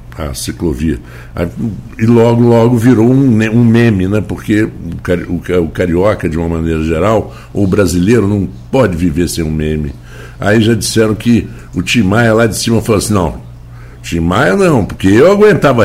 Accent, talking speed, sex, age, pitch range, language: Brazilian, 165 wpm, male, 60-79, 90-120 Hz, Portuguese